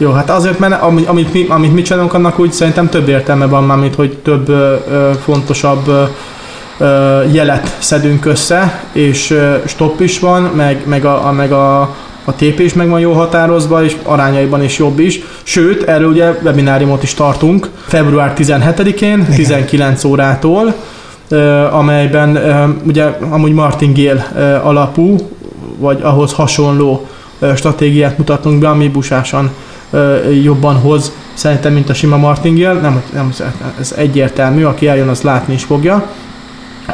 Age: 20-39